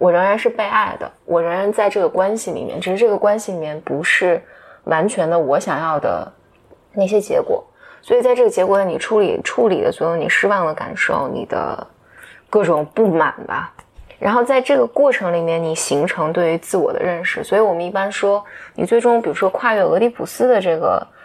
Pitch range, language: 175-245 Hz, Chinese